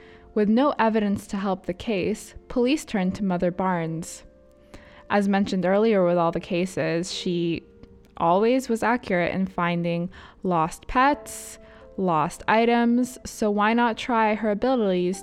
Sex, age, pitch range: female, 20-39, 170-220 Hz